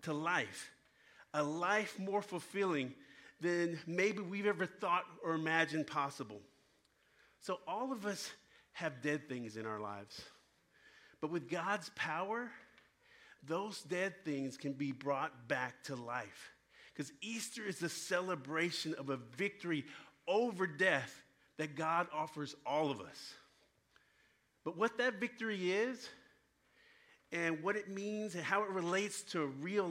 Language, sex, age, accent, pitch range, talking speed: English, male, 50-69, American, 150-200 Hz, 135 wpm